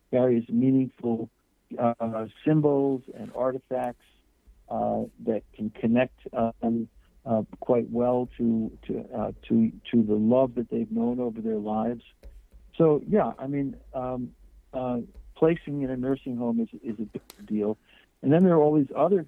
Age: 60-79